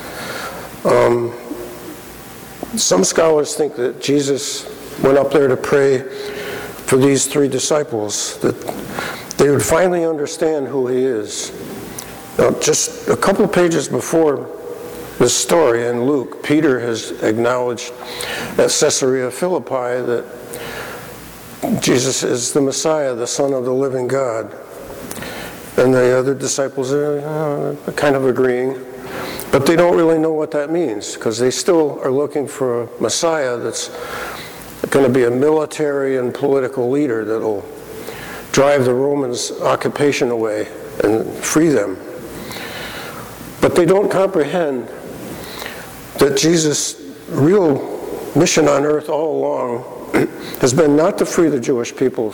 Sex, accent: male, American